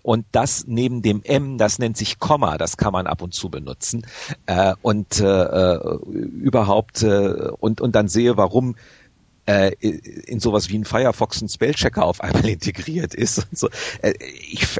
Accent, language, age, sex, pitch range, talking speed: German, German, 40-59, male, 100-120 Hz, 170 wpm